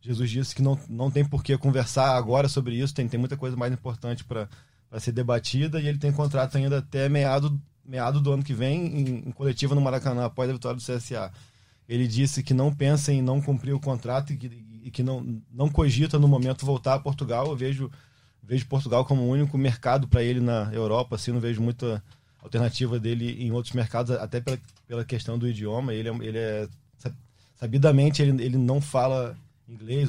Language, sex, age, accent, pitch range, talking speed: Portuguese, male, 20-39, Brazilian, 120-135 Hz, 205 wpm